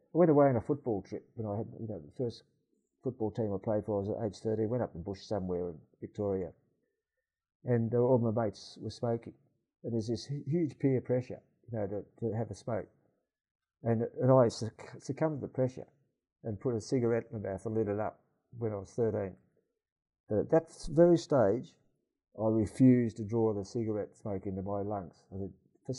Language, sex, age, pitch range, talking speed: English, male, 50-69, 105-130 Hz, 210 wpm